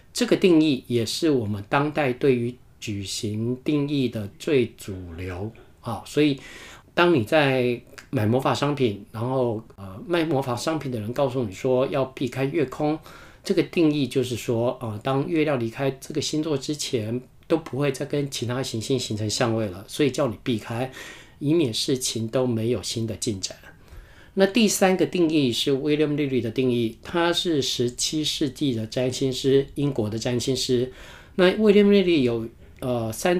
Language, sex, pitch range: Chinese, male, 120-155 Hz